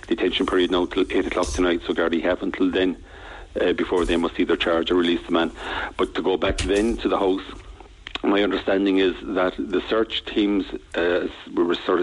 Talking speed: 210 wpm